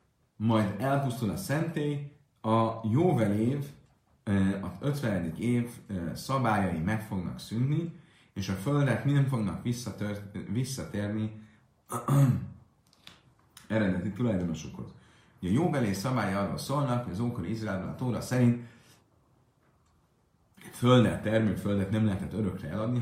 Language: Hungarian